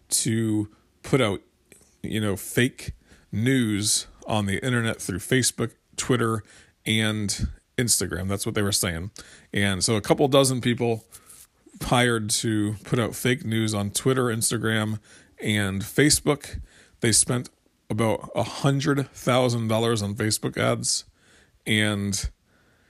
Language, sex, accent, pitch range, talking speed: English, male, American, 100-115 Hz, 120 wpm